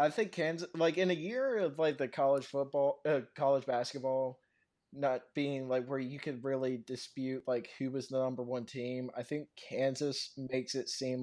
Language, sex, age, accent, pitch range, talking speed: English, male, 20-39, American, 125-140 Hz, 190 wpm